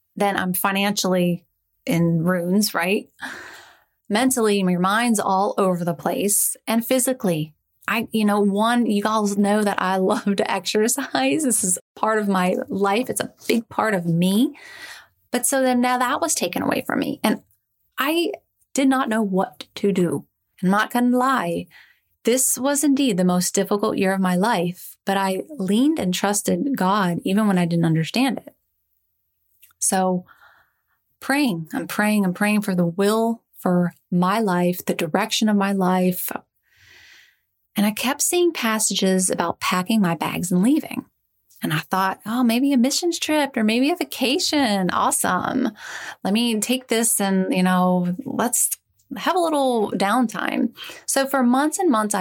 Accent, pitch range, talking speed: American, 185-255 Hz, 165 wpm